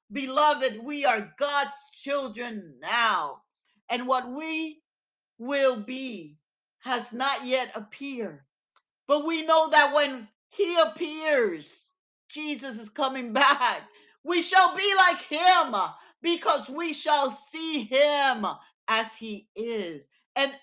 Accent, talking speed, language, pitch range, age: American, 115 wpm, English, 220-300 Hz, 50-69